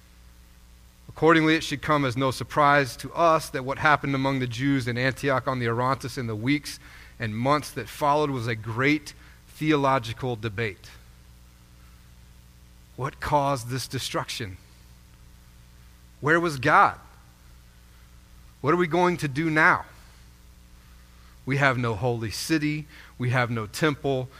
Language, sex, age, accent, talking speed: English, male, 40-59, American, 135 wpm